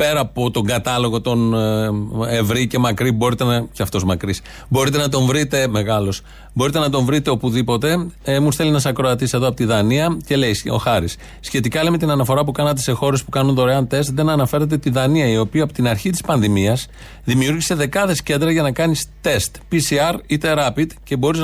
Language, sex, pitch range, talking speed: Greek, male, 125-165 Hz, 200 wpm